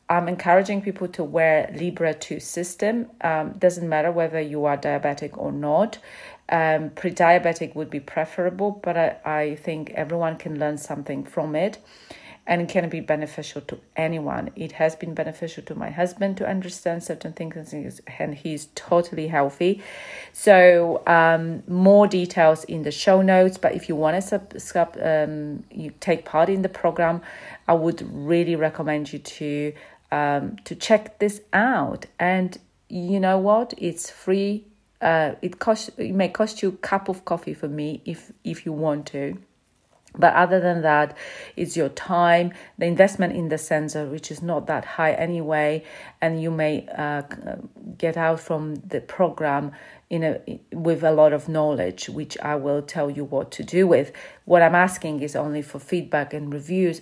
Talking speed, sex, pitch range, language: 170 wpm, female, 155-180 Hz, English